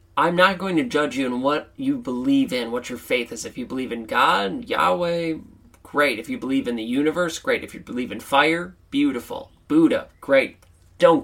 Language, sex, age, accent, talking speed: English, male, 30-49, American, 205 wpm